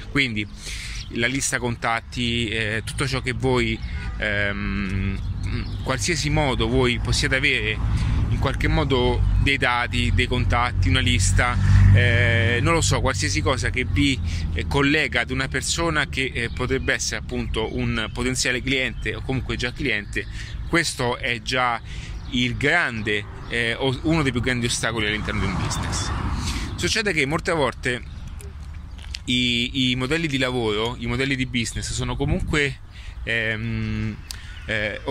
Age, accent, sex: 30-49, native, male